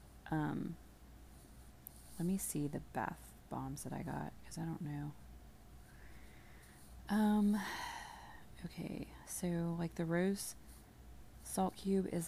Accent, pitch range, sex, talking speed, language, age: American, 130-175 Hz, female, 110 wpm, English, 30-49